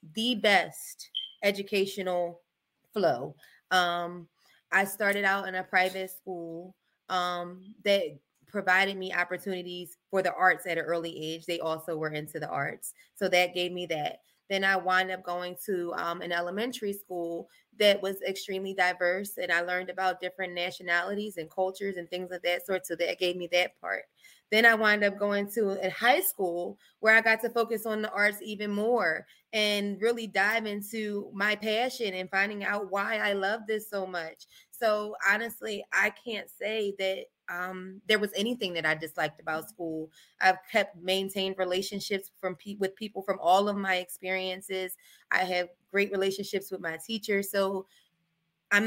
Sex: female